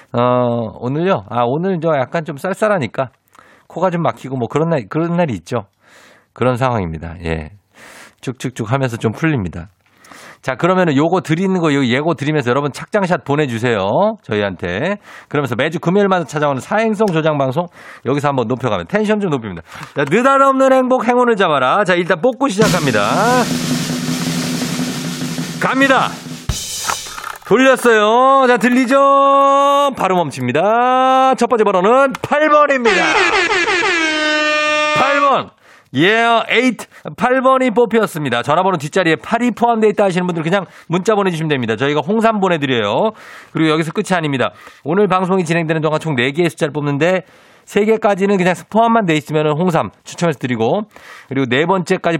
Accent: native